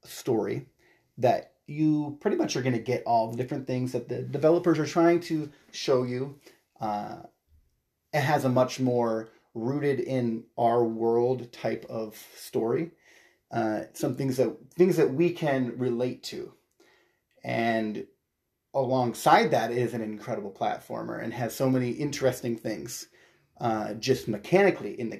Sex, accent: male, American